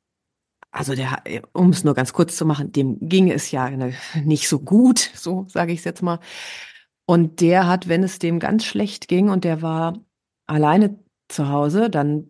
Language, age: German, 30-49